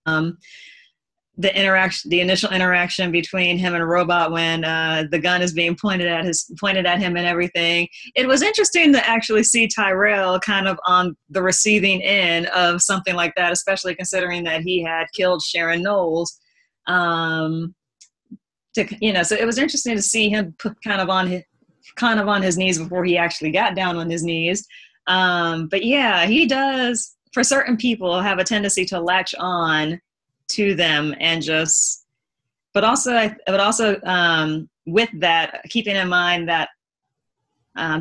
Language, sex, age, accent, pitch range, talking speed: English, female, 20-39, American, 170-200 Hz, 170 wpm